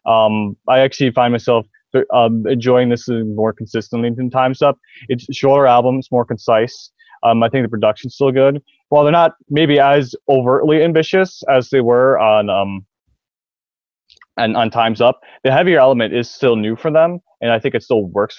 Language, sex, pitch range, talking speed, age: English, male, 105-135 Hz, 180 wpm, 20-39